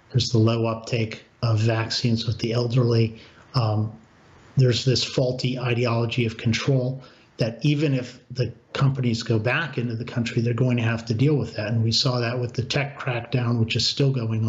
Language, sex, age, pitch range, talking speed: English, male, 50-69, 115-135 Hz, 190 wpm